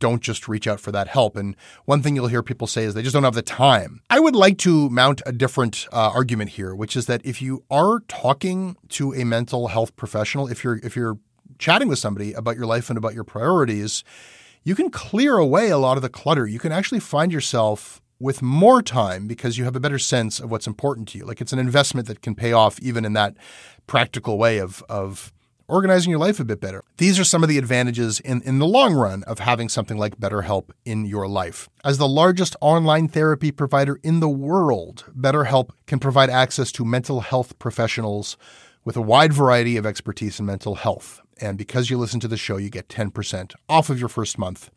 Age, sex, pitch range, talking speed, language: 30-49, male, 110-140 Hz, 220 wpm, English